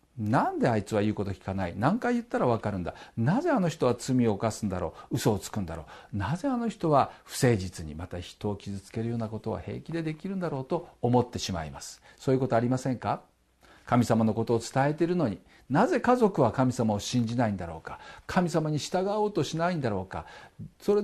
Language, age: Japanese, 50-69